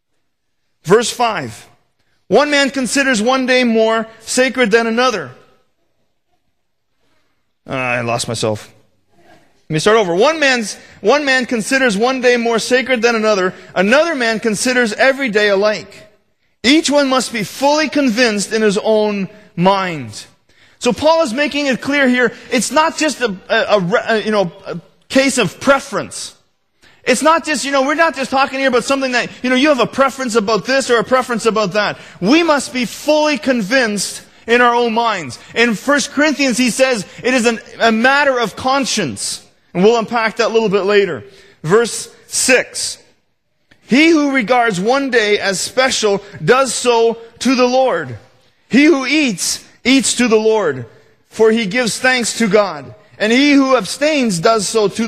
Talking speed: 170 wpm